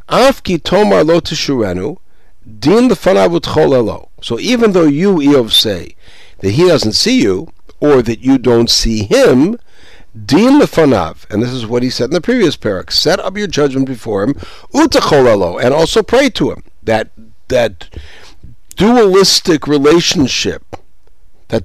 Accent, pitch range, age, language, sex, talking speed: American, 105-165 Hz, 60-79, English, male, 135 wpm